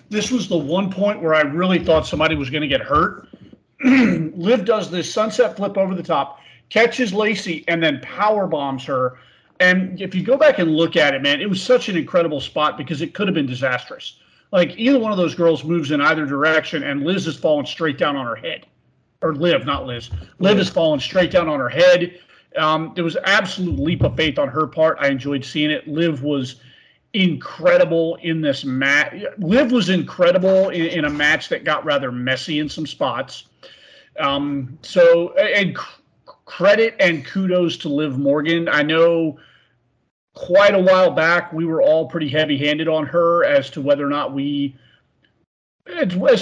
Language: English